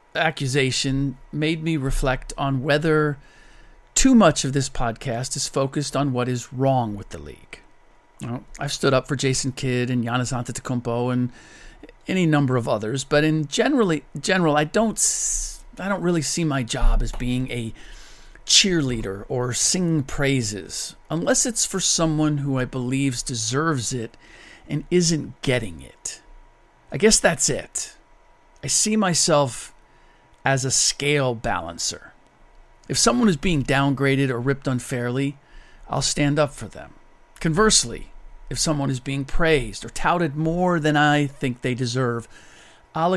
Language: English